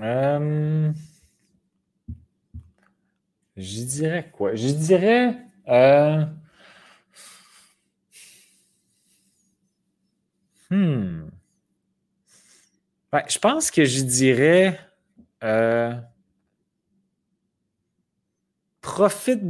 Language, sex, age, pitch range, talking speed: French, male, 30-49, 130-190 Hz, 50 wpm